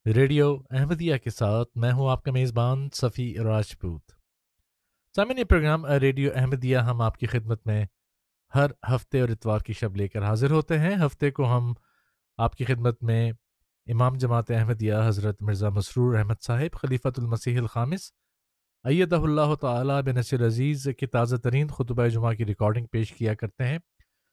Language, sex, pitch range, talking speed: Urdu, male, 115-145 Hz, 160 wpm